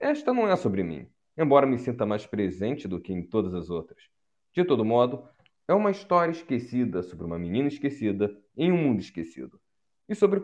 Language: Portuguese